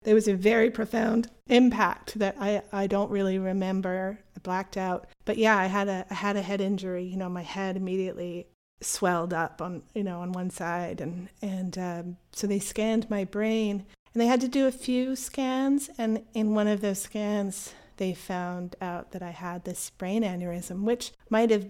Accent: American